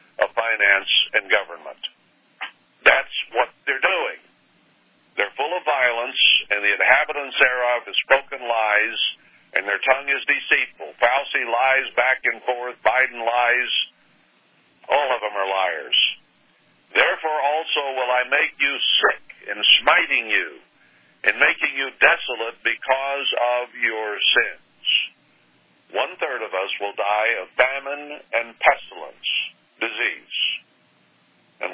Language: English